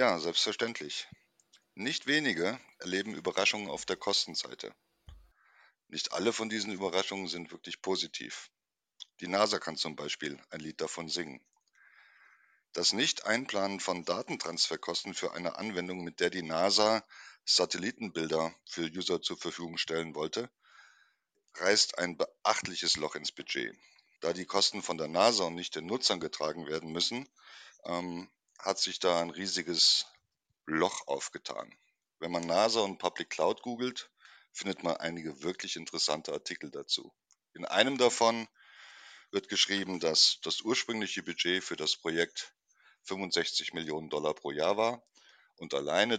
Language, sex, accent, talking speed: German, male, German, 135 wpm